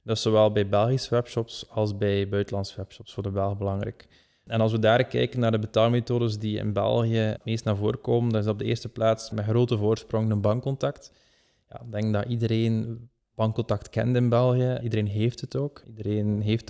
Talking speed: 200 wpm